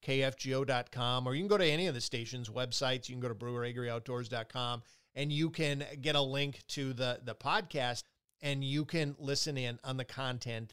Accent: American